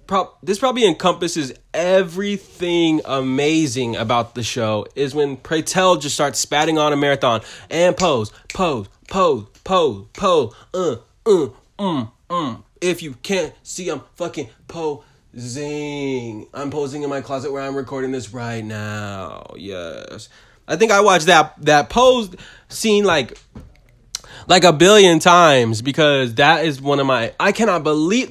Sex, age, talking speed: male, 20-39, 145 wpm